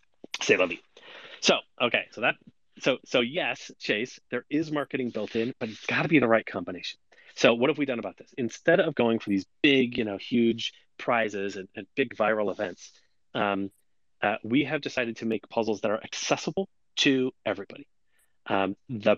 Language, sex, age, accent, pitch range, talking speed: English, male, 30-49, American, 105-140 Hz, 190 wpm